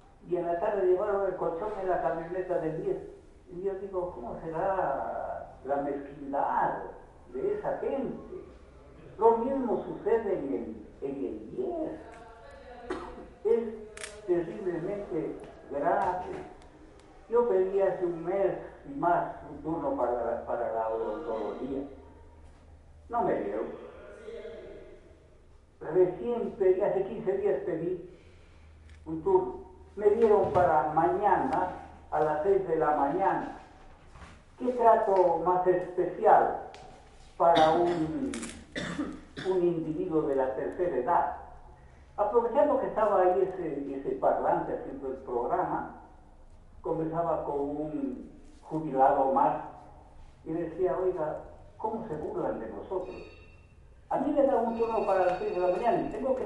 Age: 50-69